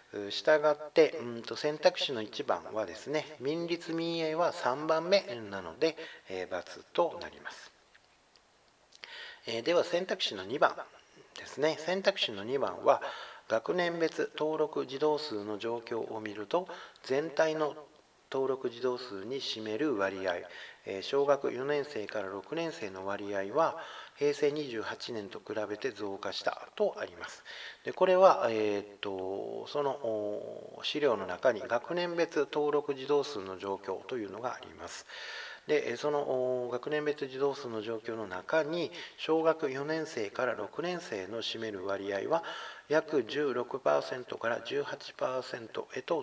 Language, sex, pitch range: Japanese, male, 110-155 Hz